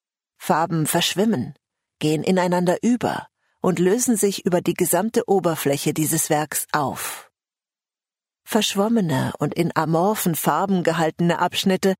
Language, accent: English, German